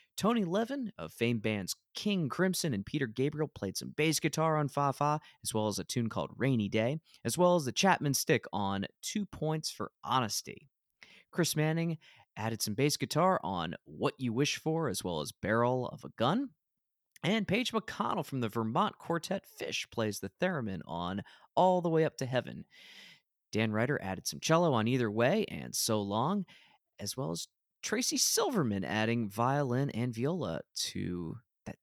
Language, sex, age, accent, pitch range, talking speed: English, male, 20-39, American, 105-180 Hz, 175 wpm